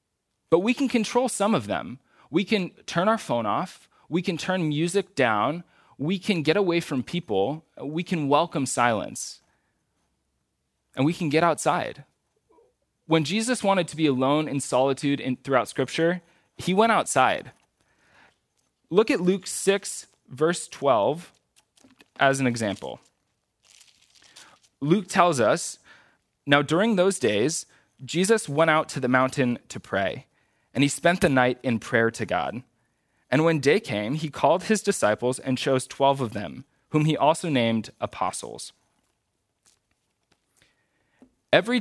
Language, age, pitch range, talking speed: English, 20-39, 130-170 Hz, 140 wpm